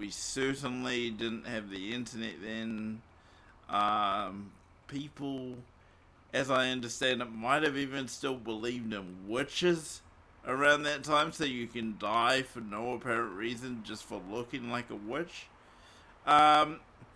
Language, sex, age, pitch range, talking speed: English, male, 50-69, 115-150 Hz, 135 wpm